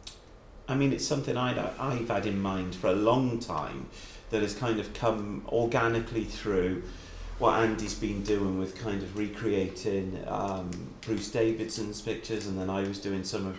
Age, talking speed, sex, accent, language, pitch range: 40-59, 170 wpm, male, British, English, 90-110 Hz